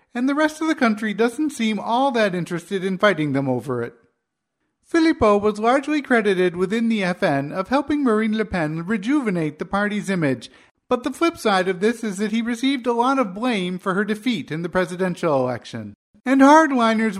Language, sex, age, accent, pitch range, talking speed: English, male, 50-69, American, 170-250 Hz, 190 wpm